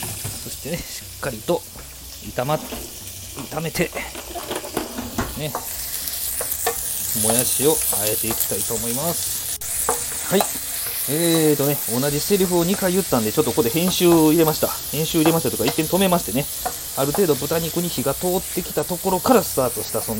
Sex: male